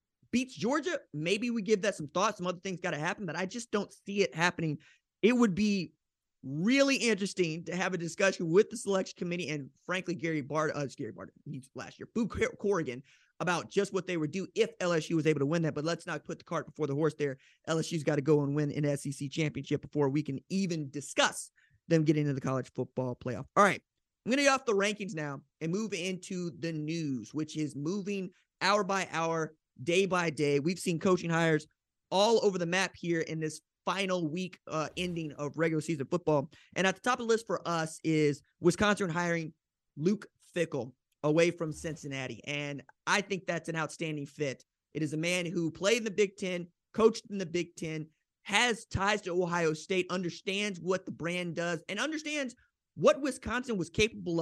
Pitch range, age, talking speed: 155-195 Hz, 20-39, 205 wpm